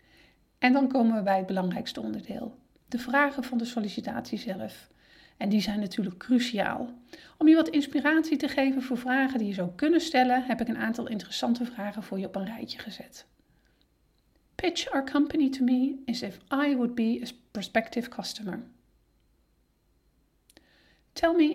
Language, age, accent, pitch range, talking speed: Dutch, 40-59, Dutch, 220-275 Hz, 165 wpm